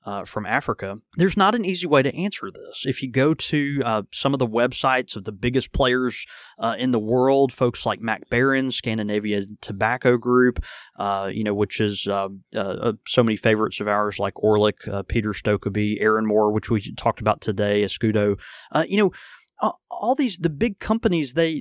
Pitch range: 105-135 Hz